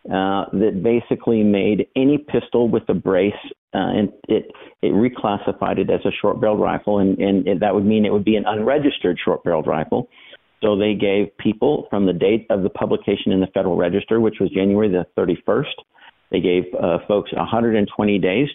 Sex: male